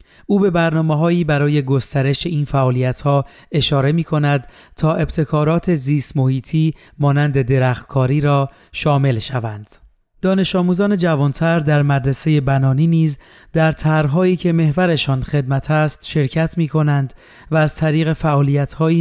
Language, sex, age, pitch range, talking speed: Persian, male, 30-49, 140-165 Hz, 135 wpm